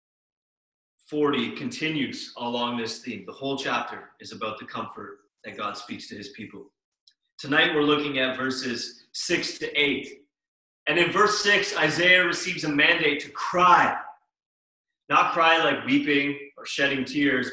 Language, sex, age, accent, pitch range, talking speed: English, male, 30-49, American, 135-175 Hz, 145 wpm